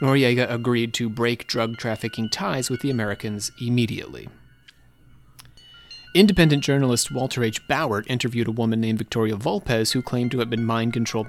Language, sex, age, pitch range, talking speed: English, male, 30-49, 115-155 Hz, 150 wpm